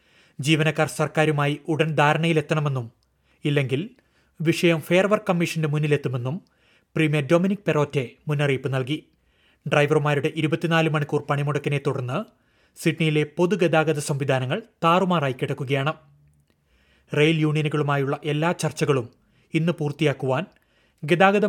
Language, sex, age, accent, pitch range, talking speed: Malayalam, male, 30-49, native, 145-165 Hz, 85 wpm